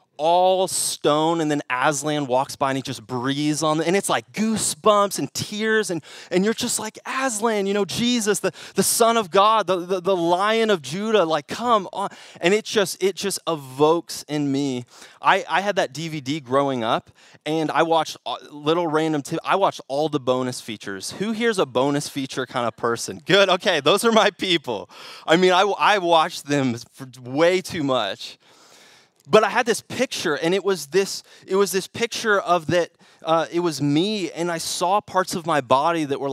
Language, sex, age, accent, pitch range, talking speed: English, male, 20-39, American, 140-185 Hz, 195 wpm